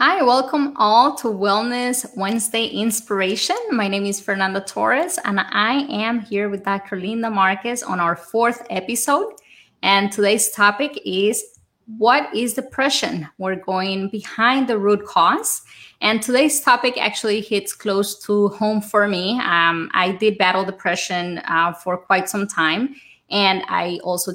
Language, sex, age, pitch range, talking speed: English, female, 20-39, 185-235 Hz, 150 wpm